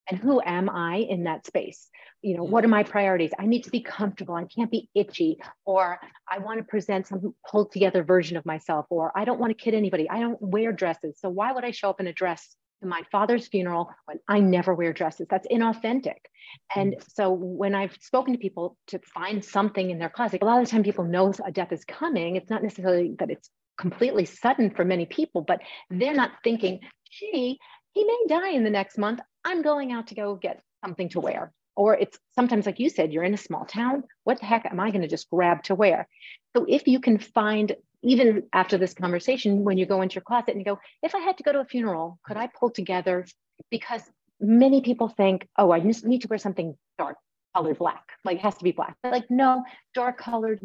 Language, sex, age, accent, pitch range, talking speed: English, female, 30-49, American, 185-235 Hz, 230 wpm